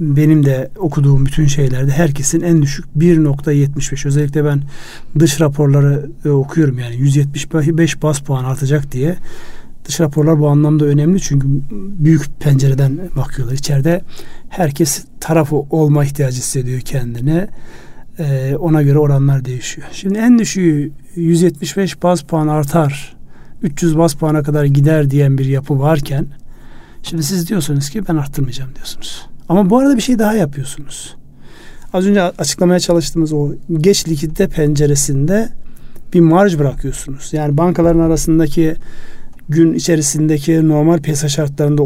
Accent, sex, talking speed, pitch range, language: native, male, 130 wpm, 140-170 Hz, Turkish